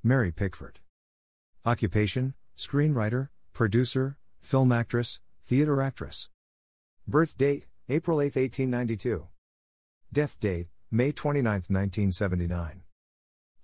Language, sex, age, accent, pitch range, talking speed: English, male, 50-69, American, 85-120 Hz, 85 wpm